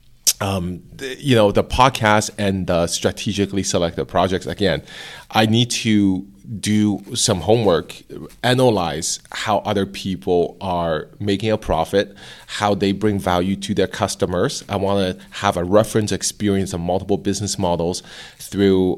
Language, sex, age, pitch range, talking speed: English, male, 30-49, 90-105 Hz, 140 wpm